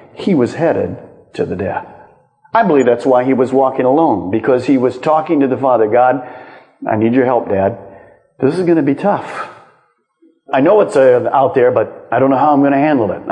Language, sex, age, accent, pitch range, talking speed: English, male, 50-69, American, 155-260 Hz, 220 wpm